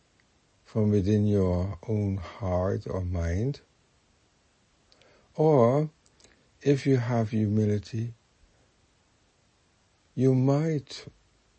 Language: English